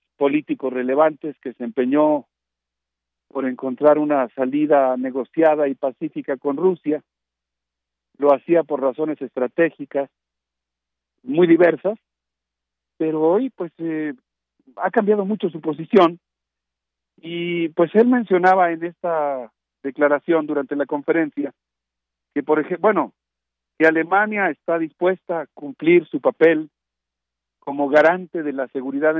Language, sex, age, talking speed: Spanish, male, 50-69, 115 wpm